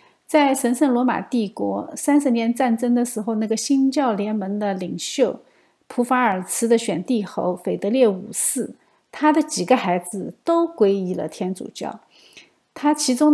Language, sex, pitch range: Chinese, female, 210-270 Hz